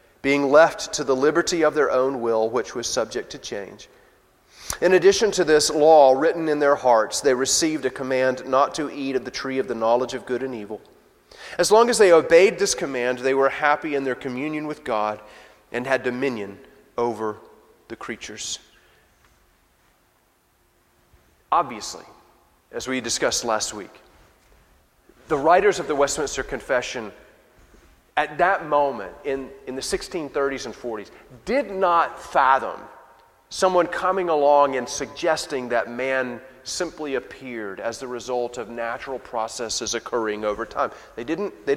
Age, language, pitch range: 30-49, English, 130-190 Hz